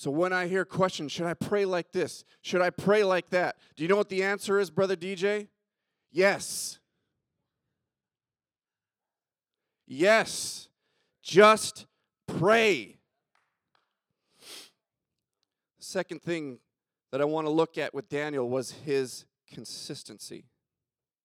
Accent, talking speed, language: American, 115 wpm, English